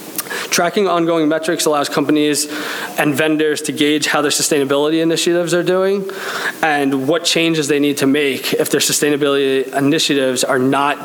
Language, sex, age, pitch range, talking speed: English, male, 20-39, 135-155 Hz, 150 wpm